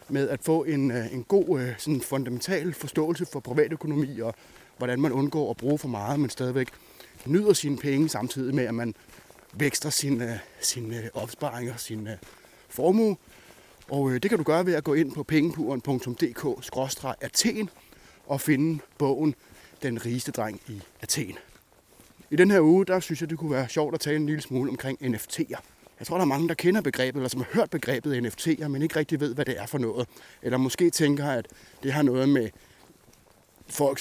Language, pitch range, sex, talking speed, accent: Danish, 130-155 Hz, male, 180 wpm, native